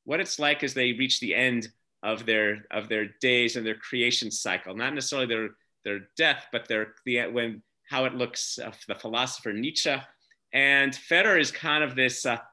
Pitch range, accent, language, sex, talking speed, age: 120-145 Hz, American, English, male, 190 wpm, 40-59